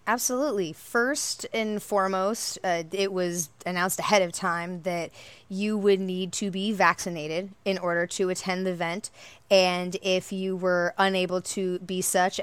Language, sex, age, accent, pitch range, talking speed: English, female, 20-39, American, 175-195 Hz, 155 wpm